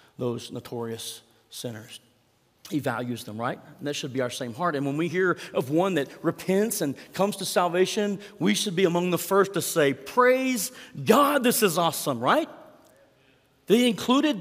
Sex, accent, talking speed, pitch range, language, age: male, American, 175 wpm, 145-210 Hz, English, 40-59